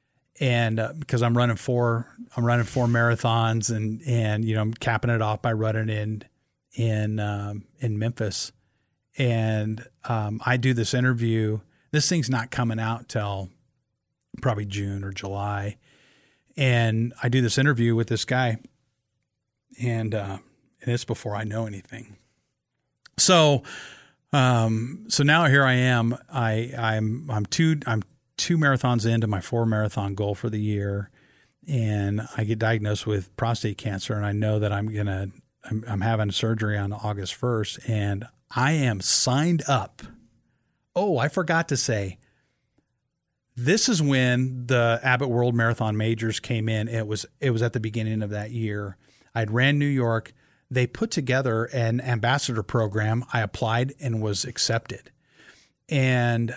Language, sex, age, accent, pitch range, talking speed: English, male, 40-59, American, 110-130 Hz, 155 wpm